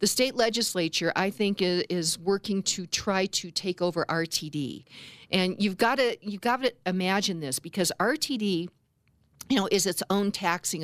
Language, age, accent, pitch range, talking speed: English, 50-69, American, 155-195 Hz, 165 wpm